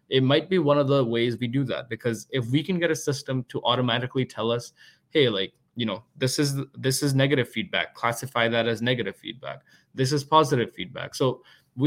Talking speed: 210 wpm